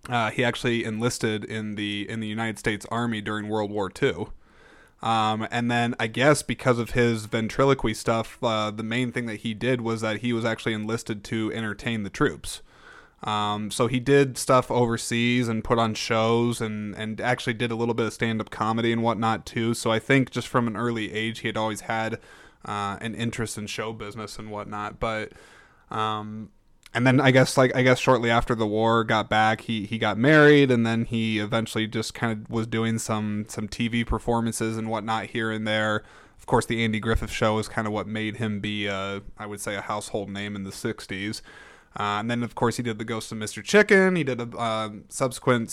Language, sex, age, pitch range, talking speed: English, male, 20-39, 110-120 Hz, 215 wpm